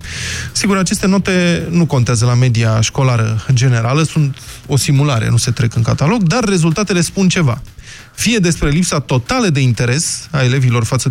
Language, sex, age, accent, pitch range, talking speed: Romanian, male, 20-39, native, 120-165 Hz, 160 wpm